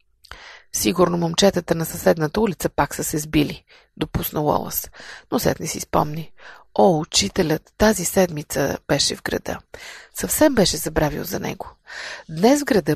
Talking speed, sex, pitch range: 145 wpm, female, 165-245 Hz